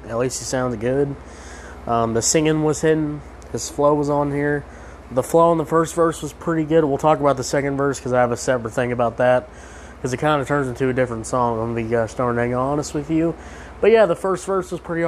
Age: 20-39